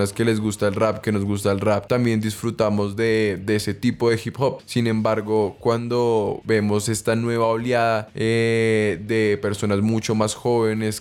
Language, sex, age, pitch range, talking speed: Spanish, male, 20-39, 105-115 Hz, 175 wpm